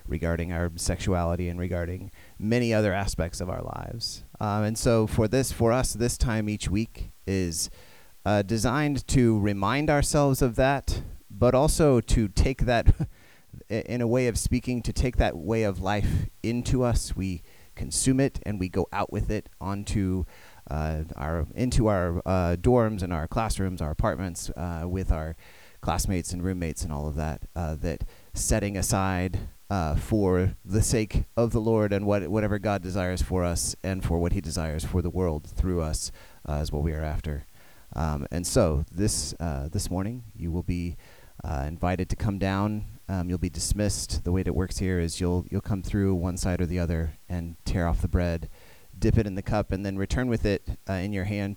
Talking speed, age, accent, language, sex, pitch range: 195 wpm, 30-49, American, English, male, 85-105 Hz